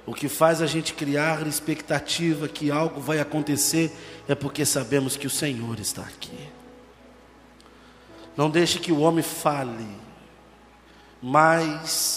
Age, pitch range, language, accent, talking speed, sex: 50-69, 105-160 Hz, Portuguese, Brazilian, 130 wpm, male